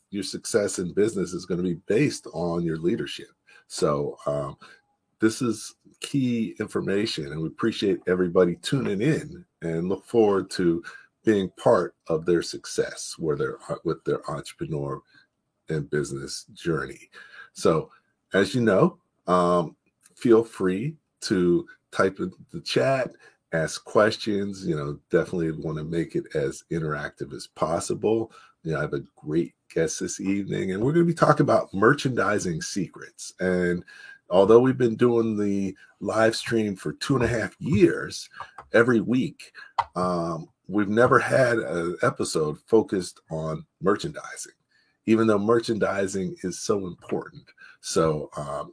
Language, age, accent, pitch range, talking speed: English, 50-69, American, 85-120 Hz, 145 wpm